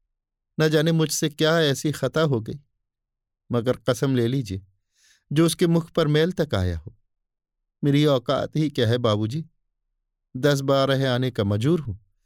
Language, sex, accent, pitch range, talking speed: Hindi, male, native, 105-155 Hz, 155 wpm